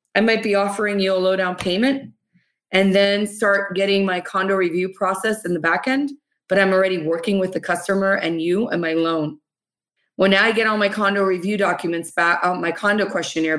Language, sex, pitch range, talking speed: English, female, 175-205 Hz, 200 wpm